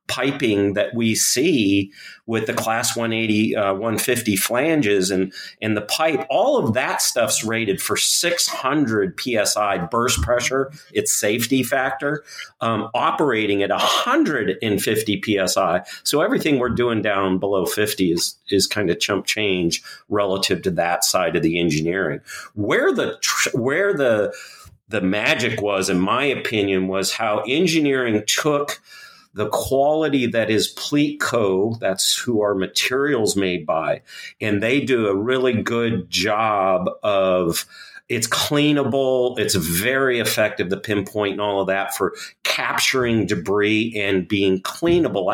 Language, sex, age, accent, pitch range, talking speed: English, male, 40-59, American, 100-130 Hz, 140 wpm